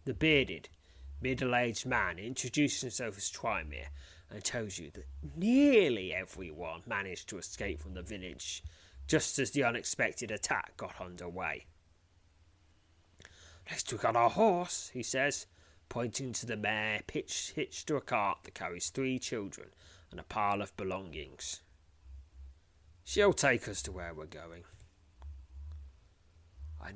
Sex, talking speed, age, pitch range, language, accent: male, 130 wpm, 30-49, 80-110 Hz, English, British